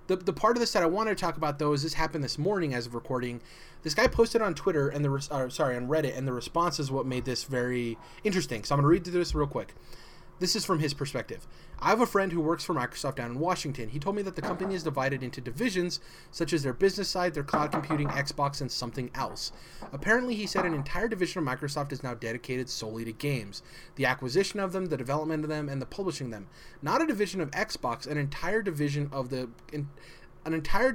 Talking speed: 240 wpm